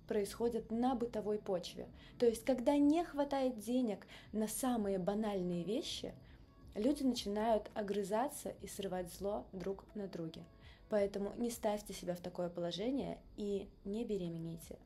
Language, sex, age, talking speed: Russian, female, 20-39, 135 wpm